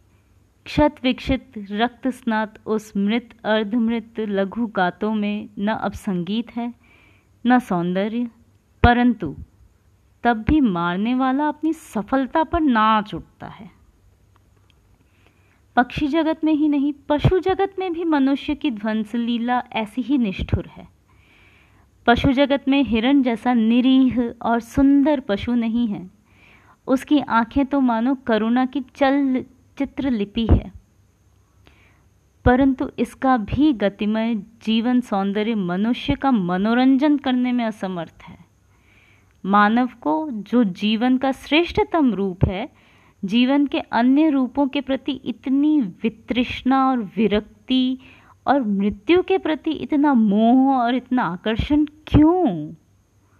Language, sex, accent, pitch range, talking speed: Hindi, female, native, 200-270 Hz, 115 wpm